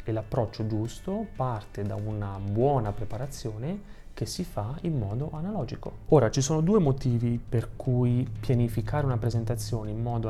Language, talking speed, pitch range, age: Italian, 145 wpm, 110-140 Hz, 30-49